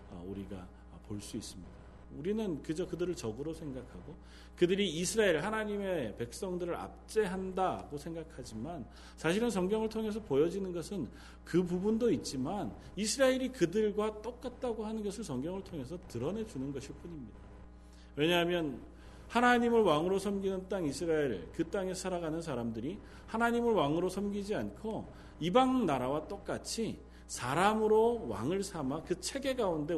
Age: 40-59